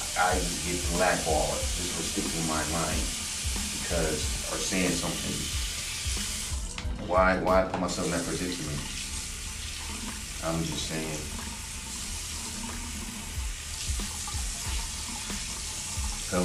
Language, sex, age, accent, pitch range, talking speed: English, male, 30-49, American, 80-95 Hz, 90 wpm